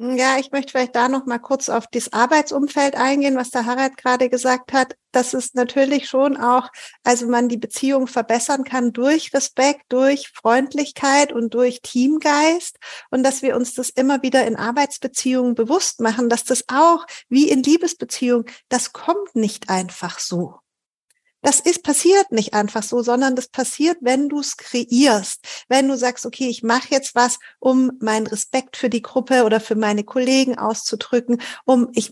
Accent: German